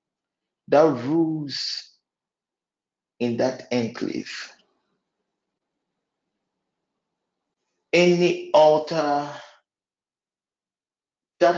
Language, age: English, 50-69